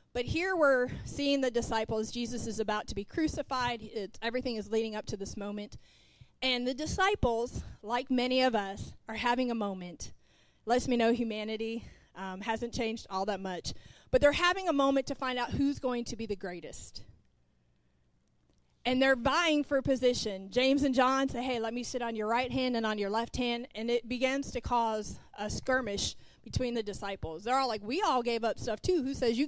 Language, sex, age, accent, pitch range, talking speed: English, female, 30-49, American, 220-265 Hz, 205 wpm